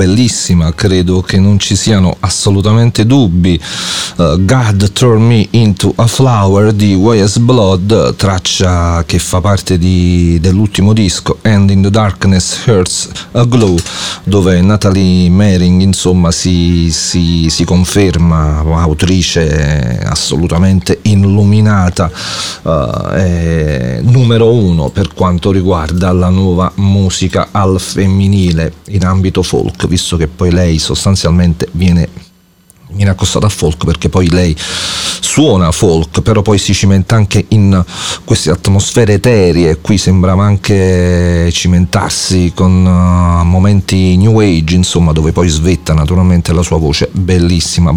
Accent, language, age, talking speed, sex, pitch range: Italian, English, 40-59, 115 wpm, male, 90-100 Hz